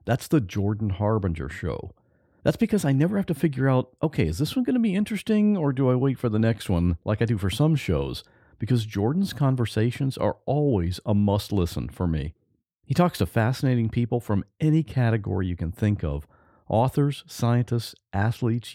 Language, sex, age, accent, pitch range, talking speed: English, male, 50-69, American, 100-140 Hz, 190 wpm